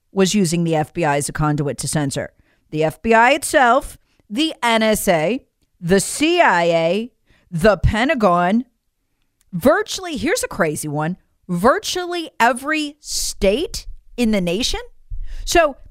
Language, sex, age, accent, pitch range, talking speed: English, female, 40-59, American, 180-300 Hz, 115 wpm